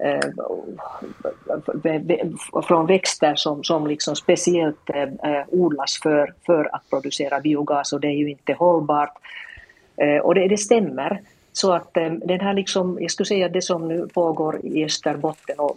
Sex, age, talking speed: female, 50-69, 140 wpm